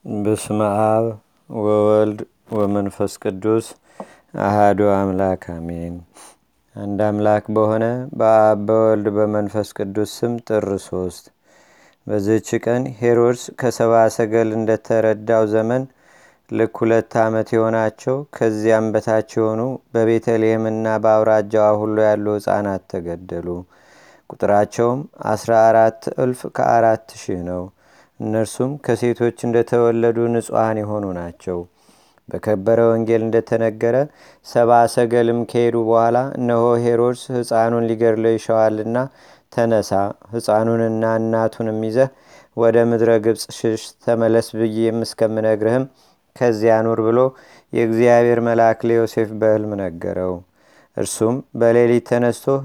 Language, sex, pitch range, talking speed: Amharic, male, 105-115 Hz, 95 wpm